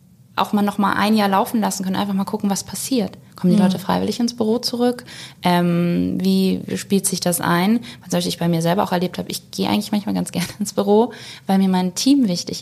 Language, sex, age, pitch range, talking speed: German, female, 20-39, 185-220 Hz, 230 wpm